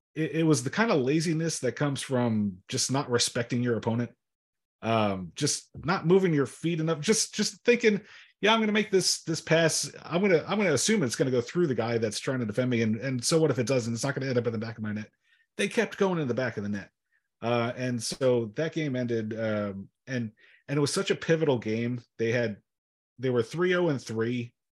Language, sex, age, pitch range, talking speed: English, male, 30-49, 110-145 Hz, 245 wpm